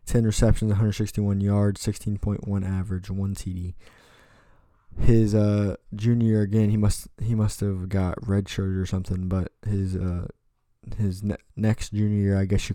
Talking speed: 155 wpm